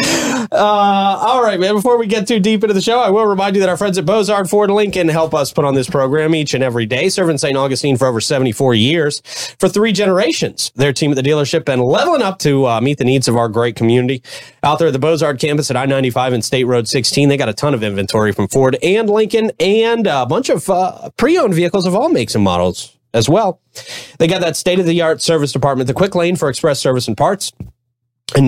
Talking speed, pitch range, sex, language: 235 wpm, 125-190 Hz, male, English